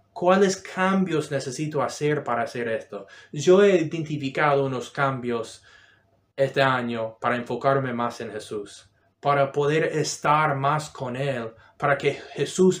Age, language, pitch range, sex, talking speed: 30-49, Spanish, 120-160 Hz, male, 130 wpm